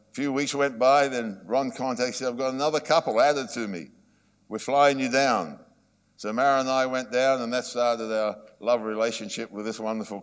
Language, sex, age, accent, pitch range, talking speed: English, male, 60-79, Australian, 110-135 Hz, 205 wpm